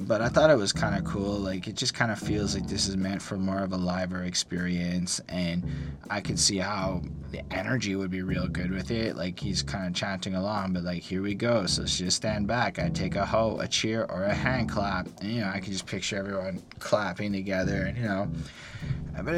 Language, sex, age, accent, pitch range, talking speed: English, male, 20-39, American, 95-120 Hz, 240 wpm